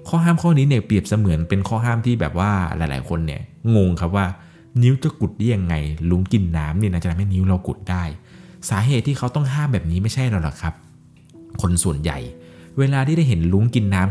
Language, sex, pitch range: Thai, male, 90-130 Hz